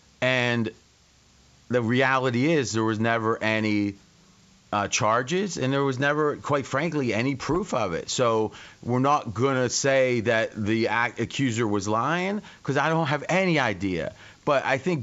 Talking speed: 160 wpm